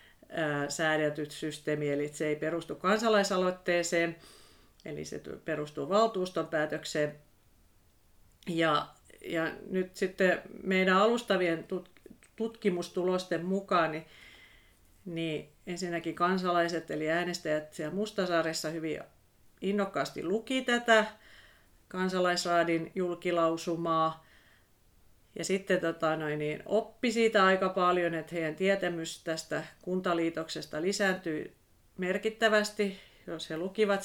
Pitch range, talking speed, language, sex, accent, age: 155-190 Hz, 95 wpm, Finnish, female, native, 40-59